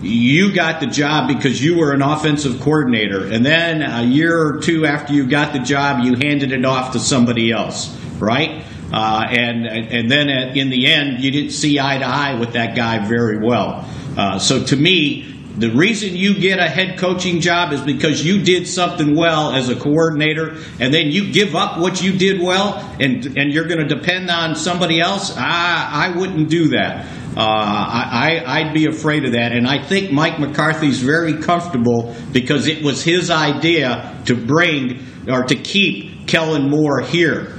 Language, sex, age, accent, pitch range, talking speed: English, male, 50-69, American, 130-165 Hz, 185 wpm